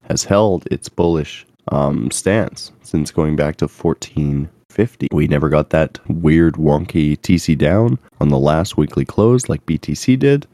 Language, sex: English, male